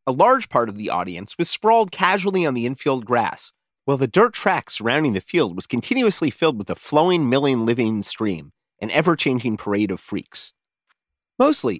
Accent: American